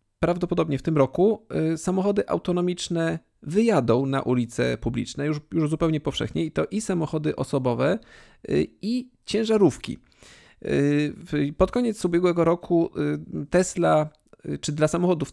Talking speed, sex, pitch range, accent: 115 wpm, male, 130-175 Hz, native